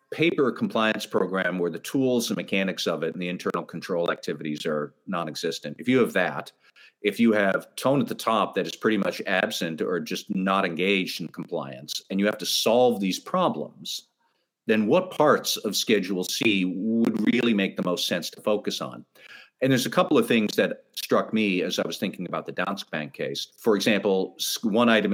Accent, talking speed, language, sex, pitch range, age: American, 200 wpm, English, male, 95-115 Hz, 50-69